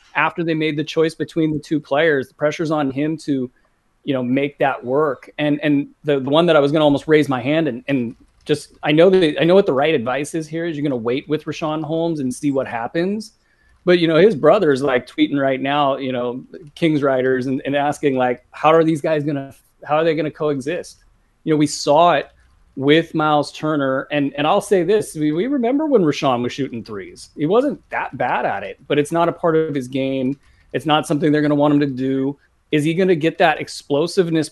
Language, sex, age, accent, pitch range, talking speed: English, male, 30-49, American, 135-160 Hz, 245 wpm